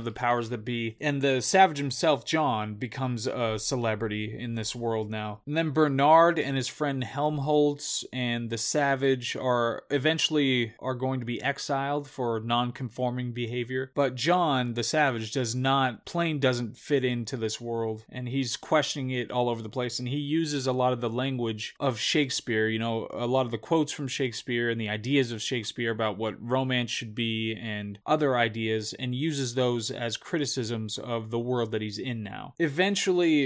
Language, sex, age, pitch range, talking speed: English, male, 20-39, 120-140 Hz, 180 wpm